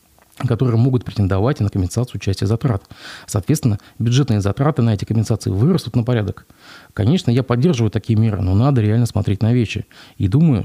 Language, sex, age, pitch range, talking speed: Russian, male, 30-49, 105-135 Hz, 165 wpm